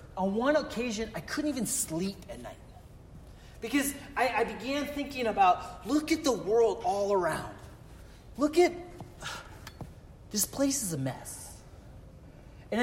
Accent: American